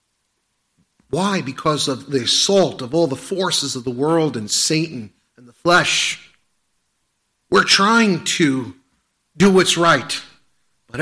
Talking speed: 130 wpm